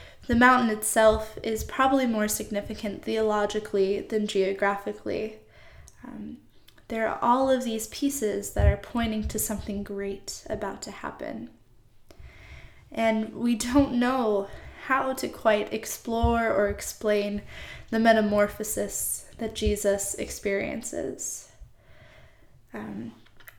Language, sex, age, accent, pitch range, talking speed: English, female, 20-39, American, 205-235 Hz, 105 wpm